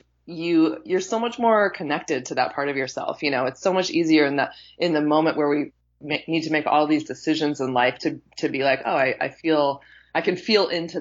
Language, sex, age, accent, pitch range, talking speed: English, female, 20-39, American, 140-170 Hz, 240 wpm